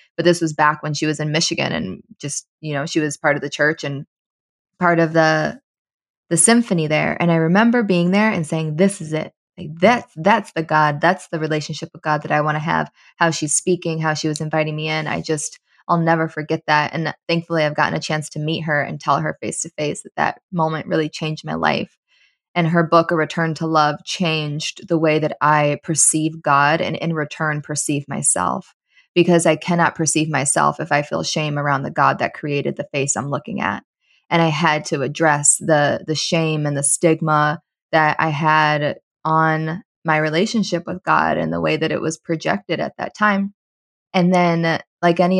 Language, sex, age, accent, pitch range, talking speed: English, female, 20-39, American, 150-175 Hz, 210 wpm